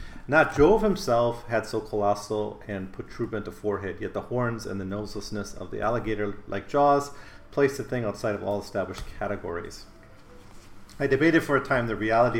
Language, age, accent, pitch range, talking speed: English, 40-59, American, 100-120 Hz, 175 wpm